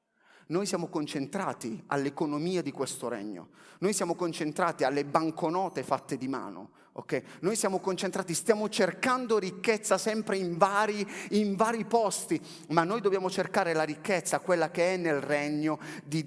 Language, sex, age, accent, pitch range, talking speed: Italian, male, 30-49, native, 145-205 Hz, 145 wpm